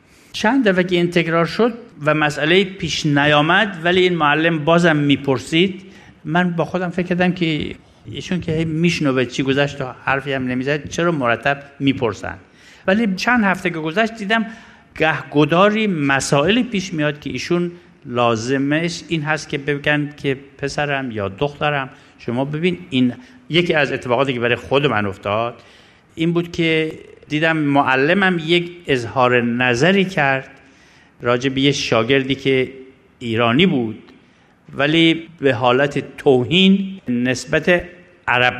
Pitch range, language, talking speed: 130-175 Hz, Persian, 130 wpm